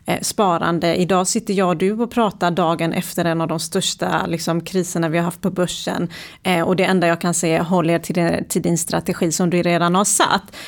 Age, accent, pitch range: 30-49, native, 175-220 Hz